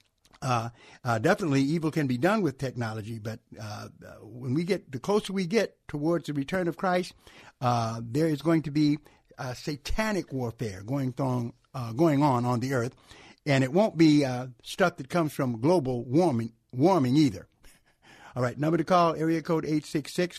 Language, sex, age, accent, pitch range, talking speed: English, male, 60-79, American, 135-180 Hz, 180 wpm